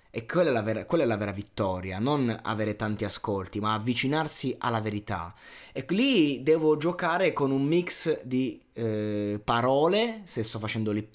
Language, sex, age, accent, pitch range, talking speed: Italian, male, 20-39, native, 110-140 Hz, 155 wpm